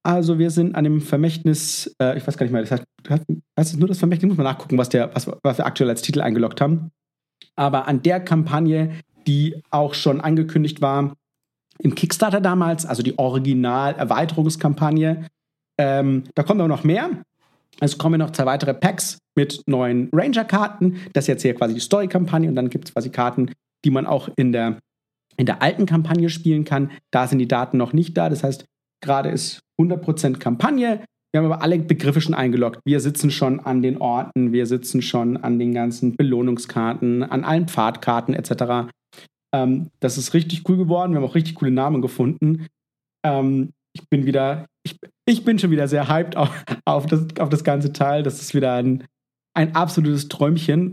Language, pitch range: German, 130-165 Hz